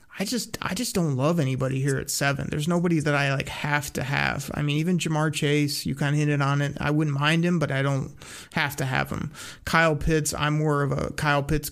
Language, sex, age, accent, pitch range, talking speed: English, male, 30-49, American, 140-160 Hz, 250 wpm